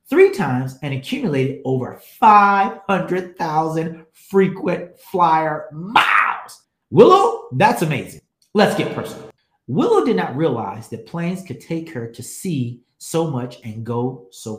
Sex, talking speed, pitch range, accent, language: male, 130 wpm, 125-195 Hz, American, English